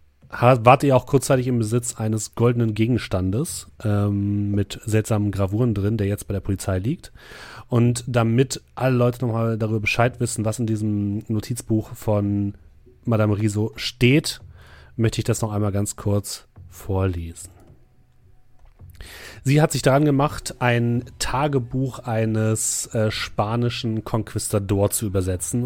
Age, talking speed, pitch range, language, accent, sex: 30-49, 135 wpm, 100-120 Hz, German, German, male